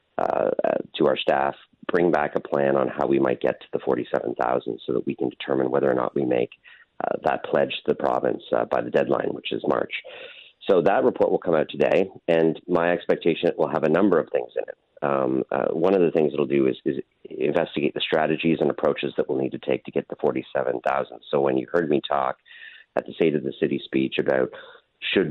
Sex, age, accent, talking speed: male, 40-59, American, 235 wpm